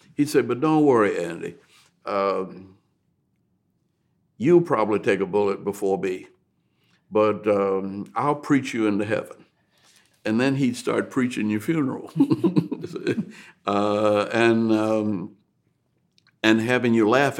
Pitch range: 100-125 Hz